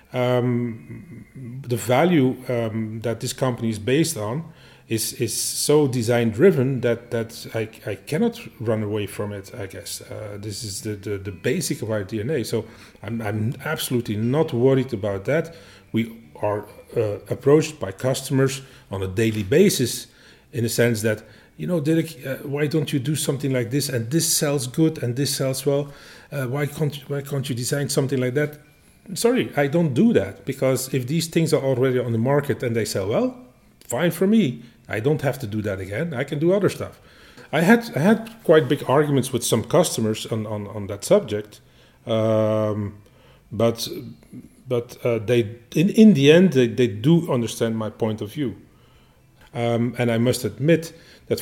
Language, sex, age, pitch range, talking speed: English, male, 30-49, 115-150 Hz, 185 wpm